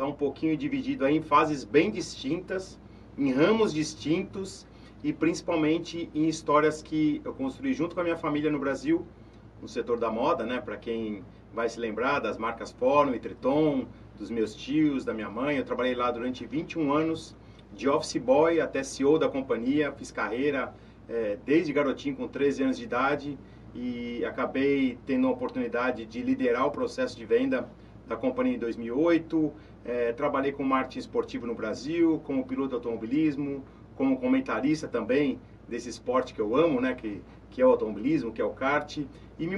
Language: Portuguese